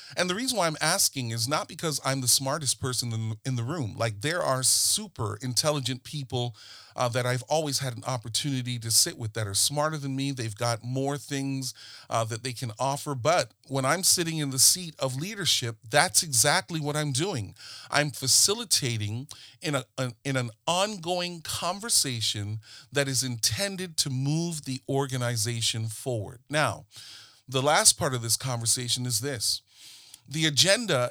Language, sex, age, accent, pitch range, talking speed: English, male, 40-59, American, 120-160 Hz, 165 wpm